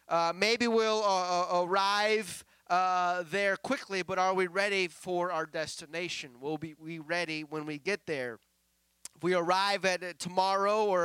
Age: 30-49